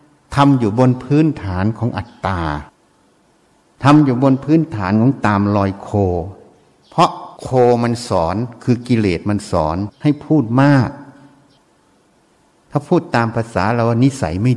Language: Thai